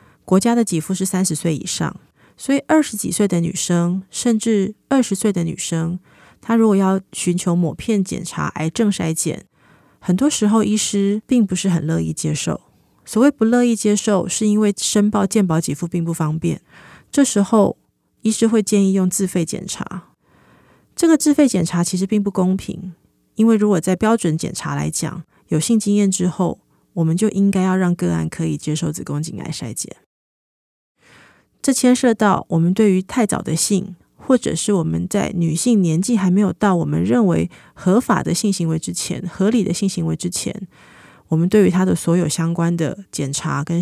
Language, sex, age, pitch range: Chinese, female, 30-49, 170-215 Hz